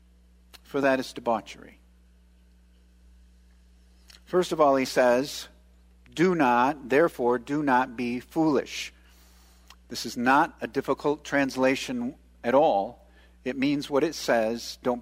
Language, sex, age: English, male, 50-69